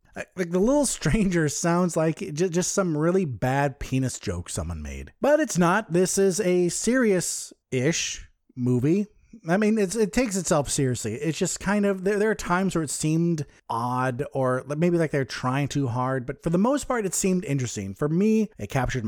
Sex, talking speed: male, 185 wpm